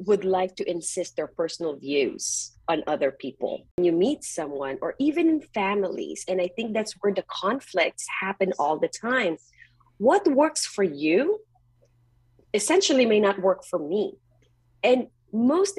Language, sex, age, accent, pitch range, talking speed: English, female, 30-49, Filipino, 165-230 Hz, 155 wpm